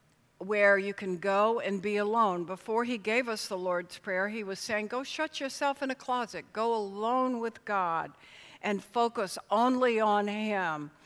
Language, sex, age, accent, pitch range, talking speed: English, female, 60-79, American, 175-220 Hz, 175 wpm